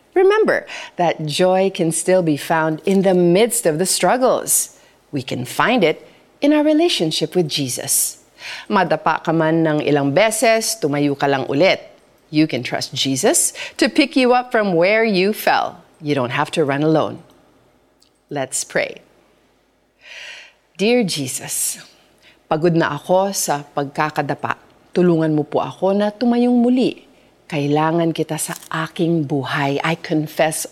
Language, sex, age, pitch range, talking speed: Filipino, female, 40-59, 150-240 Hz, 145 wpm